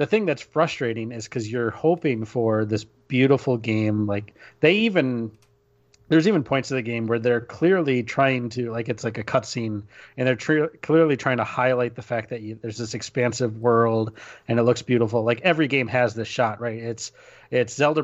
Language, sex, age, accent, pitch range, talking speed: English, male, 30-49, American, 110-135 Hz, 200 wpm